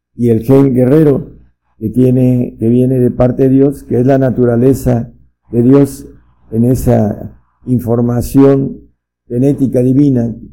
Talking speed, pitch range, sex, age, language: 130 wpm, 105-125 Hz, male, 50-69, Spanish